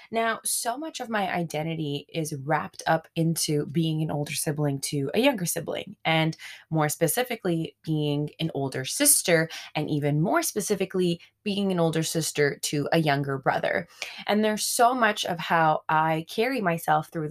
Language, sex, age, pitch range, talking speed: English, female, 20-39, 155-200 Hz, 165 wpm